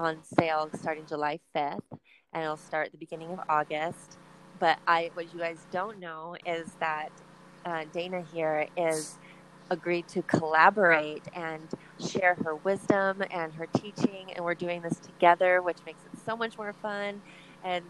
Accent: American